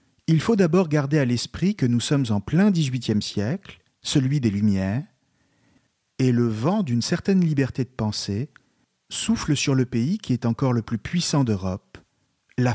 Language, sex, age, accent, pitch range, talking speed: French, male, 40-59, French, 115-155 Hz, 170 wpm